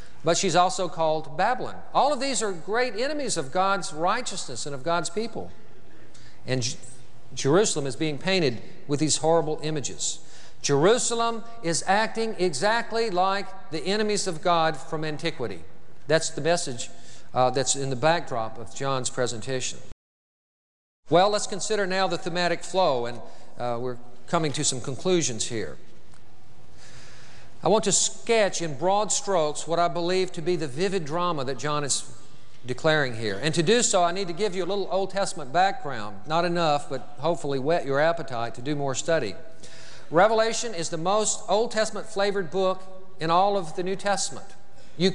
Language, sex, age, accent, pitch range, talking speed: English, male, 50-69, American, 135-195 Hz, 165 wpm